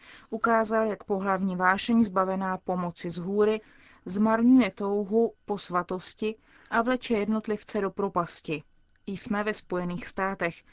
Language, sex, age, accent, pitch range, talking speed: Czech, female, 20-39, native, 185-225 Hz, 115 wpm